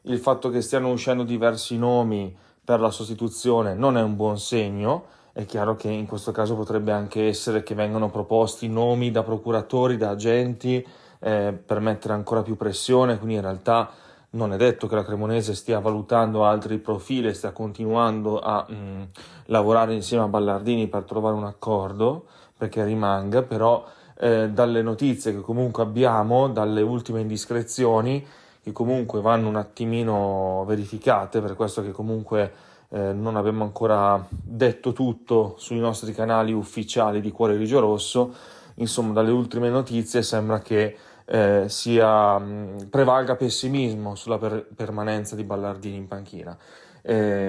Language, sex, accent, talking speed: Italian, male, native, 145 wpm